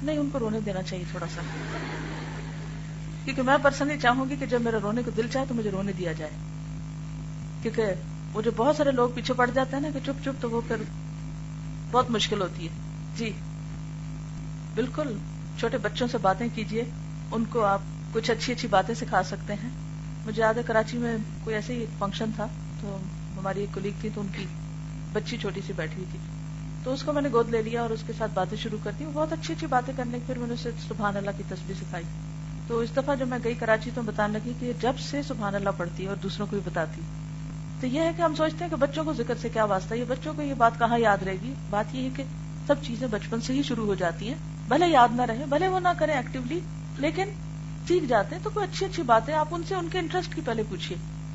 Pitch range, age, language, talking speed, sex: 155-220 Hz, 40-59, Urdu, 220 wpm, female